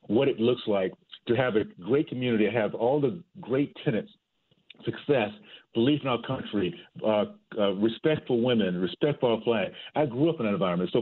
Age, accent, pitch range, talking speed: 50-69, American, 110-150 Hz, 190 wpm